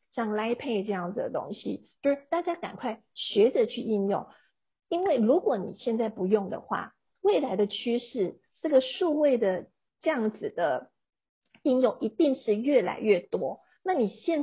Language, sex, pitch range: Chinese, female, 205-265 Hz